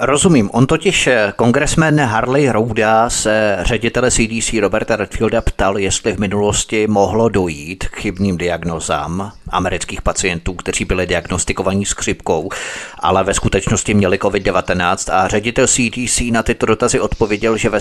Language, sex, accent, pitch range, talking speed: Czech, male, native, 100-125 Hz, 140 wpm